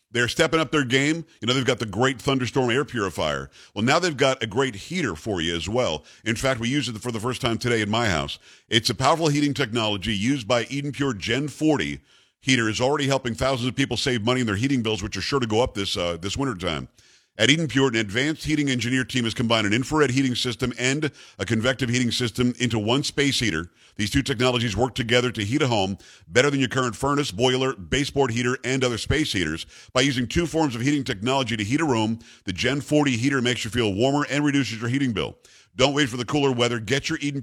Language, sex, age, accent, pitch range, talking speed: English, male, 50-69, American, 115-140 Hz, 240 wpm